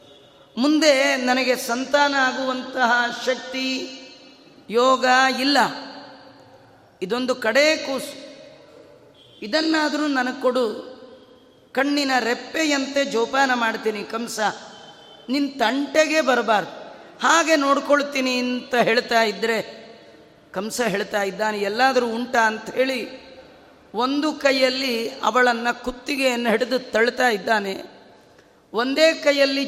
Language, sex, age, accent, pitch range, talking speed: Kannada, female, 30-49, native, 235-280 Hz, 85 wpm